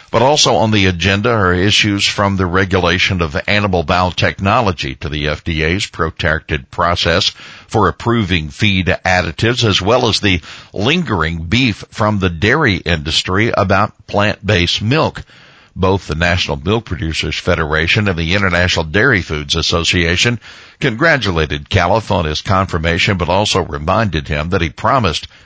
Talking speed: 140 wpm